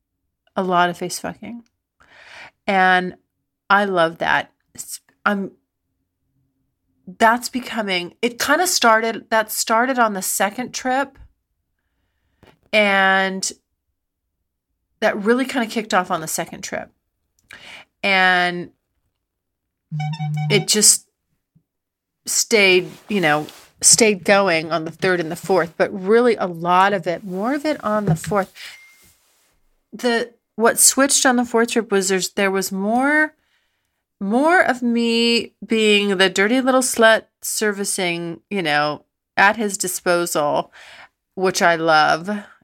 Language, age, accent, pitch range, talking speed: English, 40-59, American, 150-215 Hz, 120 wpm